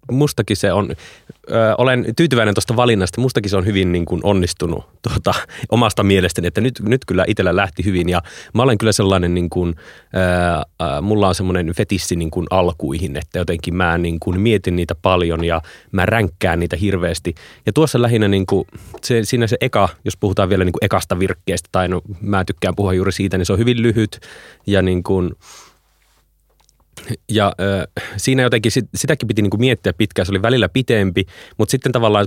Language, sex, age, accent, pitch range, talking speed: Finnish, male, 30-49, native, 90-110 Hz, 160 wpm